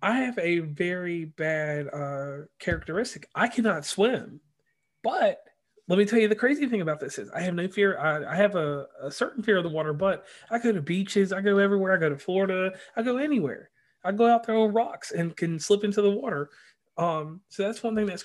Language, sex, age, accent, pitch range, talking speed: English, male, 30-49, American, 160-210 Hz, 225 wpm